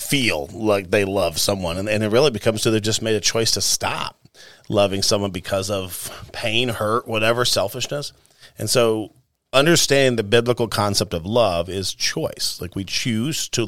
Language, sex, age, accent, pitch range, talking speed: English, male, 40-59, American, 95-115 Hz, 175 wpm